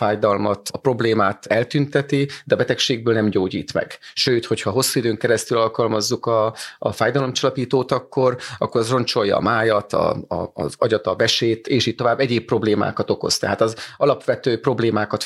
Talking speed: 155 wpm